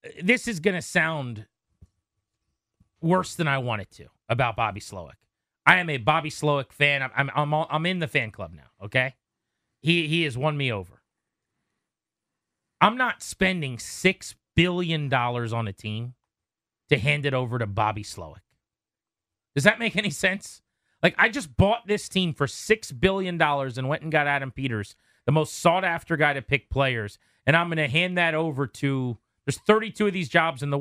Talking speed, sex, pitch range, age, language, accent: 190 wpm, male, 120-165 Hz, 30-49, English, American